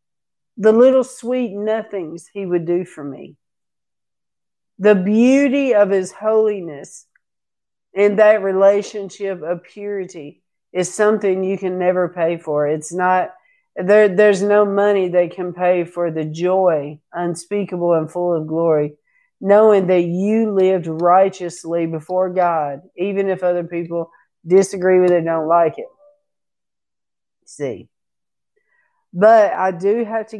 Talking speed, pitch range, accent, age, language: 130 wpm, 165-205 Hz, American, 50-69, English